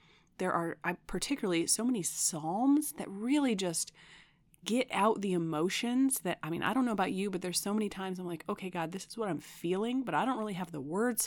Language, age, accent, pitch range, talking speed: English, 30-49, American, 170-215 Hz, 225 wpm